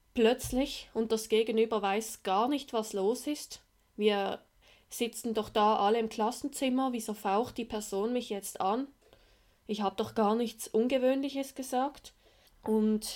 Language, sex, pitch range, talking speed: German, female, 205-245 Hz, 145 wpm